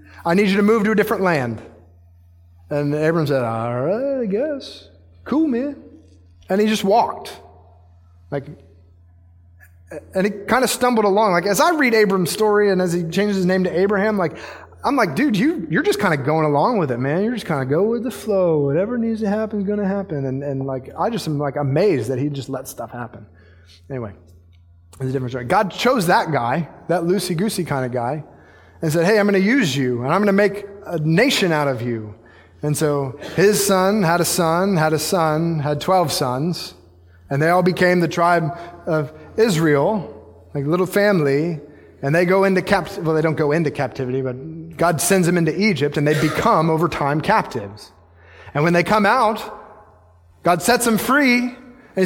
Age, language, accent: 30-49, English, American